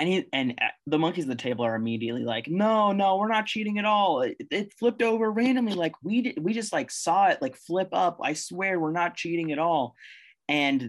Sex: male